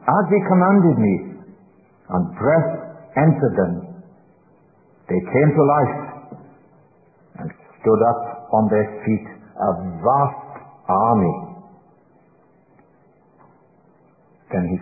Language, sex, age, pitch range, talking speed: English, male, 60-79, 100-165 Hz, 95 wpm